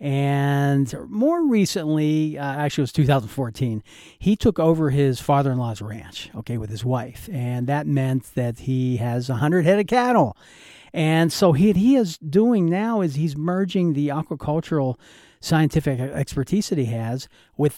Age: 50-69